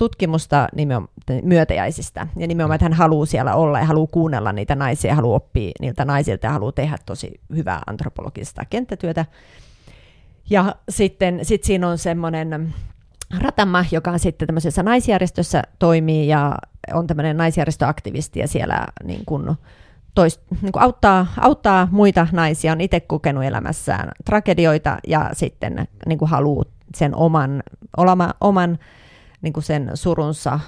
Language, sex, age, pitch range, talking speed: Finnish, female, 30-49, 145-185 Hz, 130 wpm